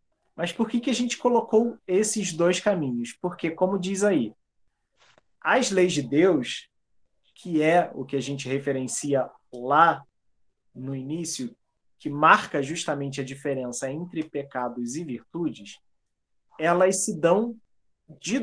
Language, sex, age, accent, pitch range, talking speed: Portuguese, male, 20-39, Brazilian, 150-220 Hz, 135 wpm